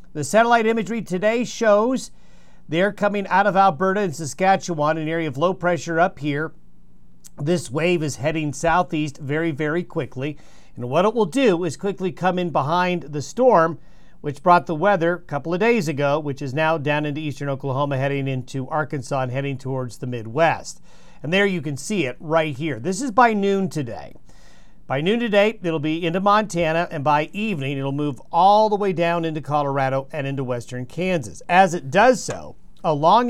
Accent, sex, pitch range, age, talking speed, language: American, male, 145-190 Hz, 50-69, 185 wpm, English